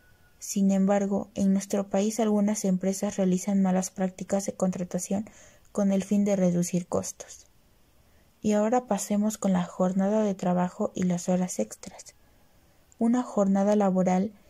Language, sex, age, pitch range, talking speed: Spanish, female, 20-39, 185-210 Hz, 135 wpm